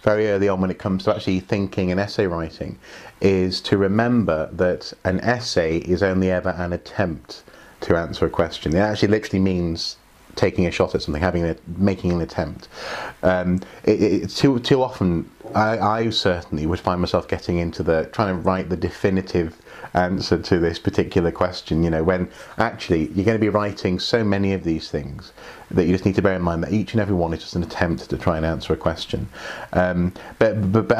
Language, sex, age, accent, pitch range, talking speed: English, male, 30-49, British, 90-105 Hz, 205 wpm